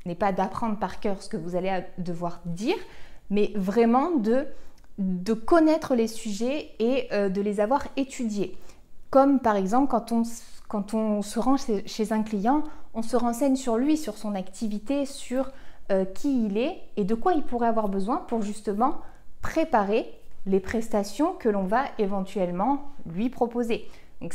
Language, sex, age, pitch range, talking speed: French, female, 20-39, 200-265 Hz, 165 wpm